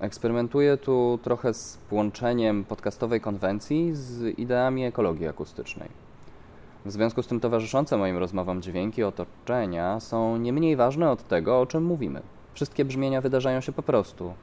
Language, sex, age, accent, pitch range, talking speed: Polish, male, 20-39, native, 95-120 Hz, 145 wpm